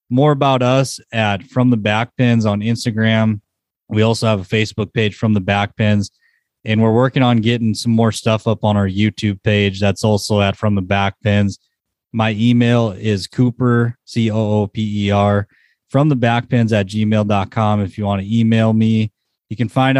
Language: English